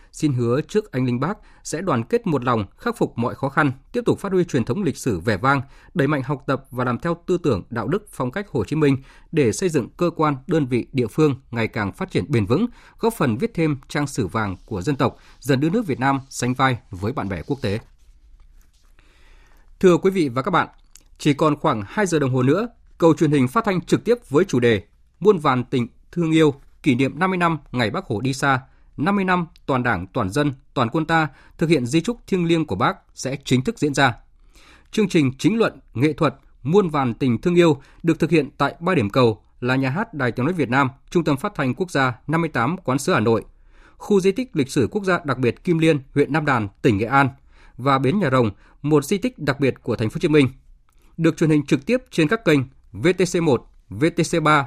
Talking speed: 240 wpm